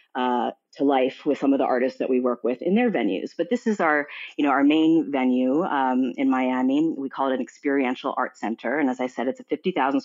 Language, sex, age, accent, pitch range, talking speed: English, female, 30-49, American, 130-185 Hz, 245 wpm